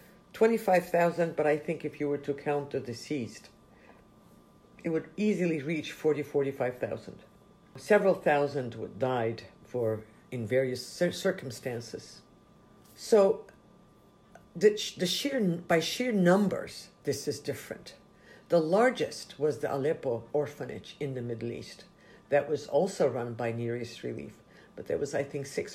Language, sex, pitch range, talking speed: English, female, 130-180 Hz, 140 wpm